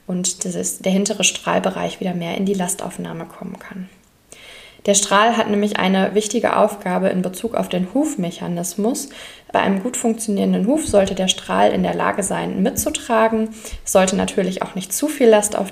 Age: 20-39